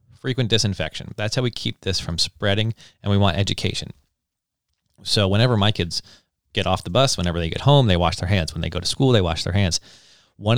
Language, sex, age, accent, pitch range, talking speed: English, male, 30-49, American, 90-115 Hz, 220 wpm